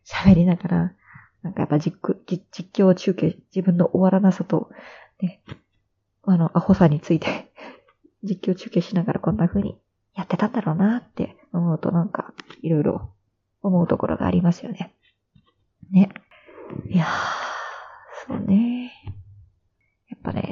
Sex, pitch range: female, 170-205 Hz